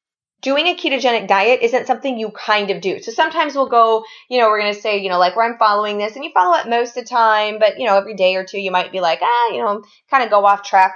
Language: English